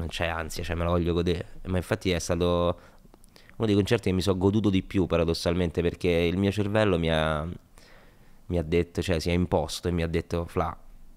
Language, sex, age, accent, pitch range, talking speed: Italian, male, 20-39, native, 80-95 Hz, 215 wpm